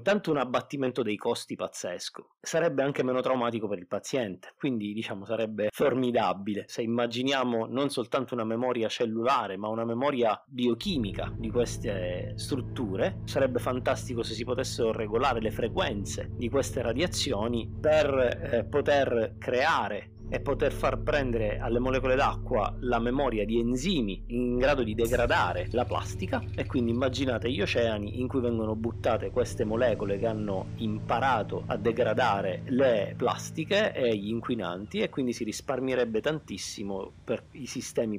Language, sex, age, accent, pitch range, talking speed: Italian, male, 30-49, native, 105-130 Hz, 145 wpm